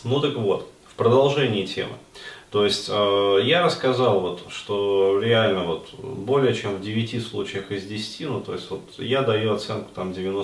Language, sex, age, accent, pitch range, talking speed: Russian, male, 30-49, native, 95-120 Hz, 170 wpm